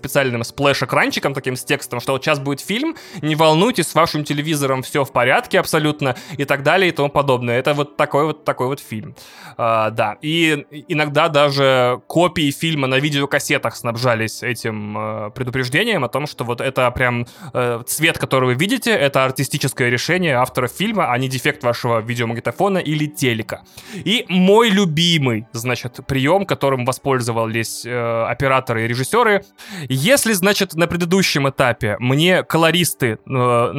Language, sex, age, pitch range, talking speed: Russian, male, 20-39, 130-165 Hz, 155 wpm